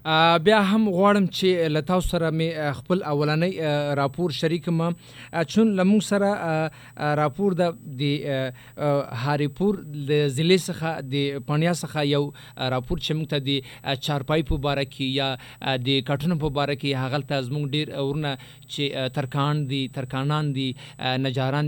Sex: male